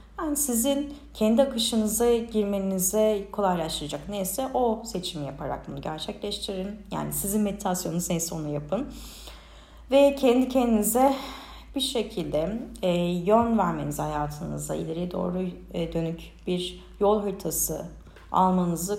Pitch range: 170-215 Hz